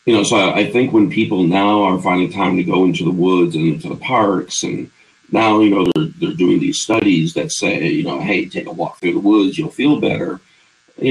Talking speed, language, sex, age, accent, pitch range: 240 wpm, English, male, 50-69, American, 100-160 Hz